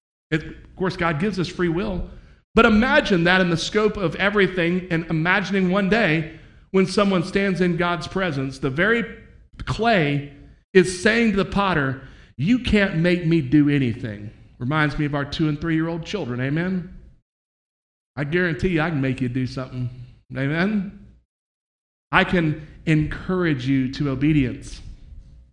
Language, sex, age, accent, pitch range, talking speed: English, male, 40-59, American, 140-185 Hz, 155 wpm